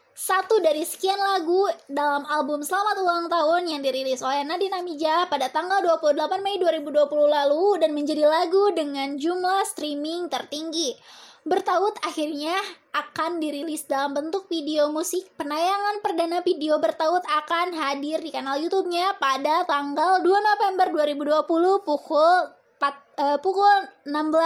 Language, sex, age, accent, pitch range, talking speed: English, female, 10-29, Indonesian, 290-360 Hz, 130 wpm